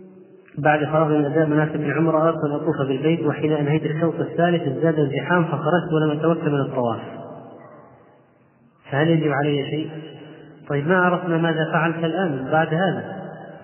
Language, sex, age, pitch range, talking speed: Arabic, male, 30-49, 145-165 Hz, 145 wpm